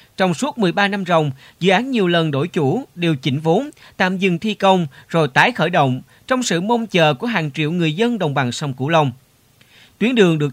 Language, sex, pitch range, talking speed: Vietnamese, male, 145-200 Hz, 220 wpm